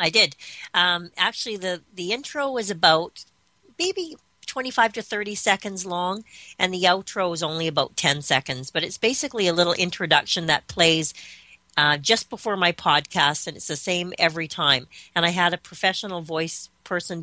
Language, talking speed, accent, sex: English, 180 wpm, American, female